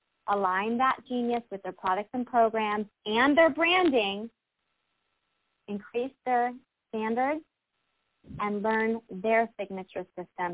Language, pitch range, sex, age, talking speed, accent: English, 195-230 Hz, female, 30-49, 110 wpm, American